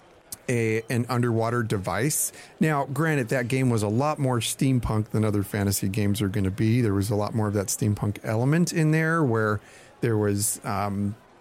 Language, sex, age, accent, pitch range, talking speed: English, male, 40-59, American, 105-140 Hz, 190 wpm